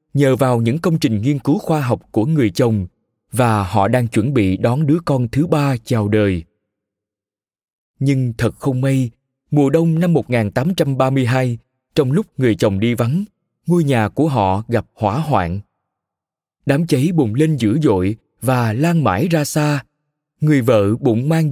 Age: 20-39